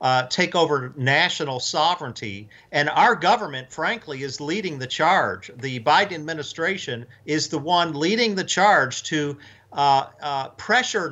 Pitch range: 135-170 Hz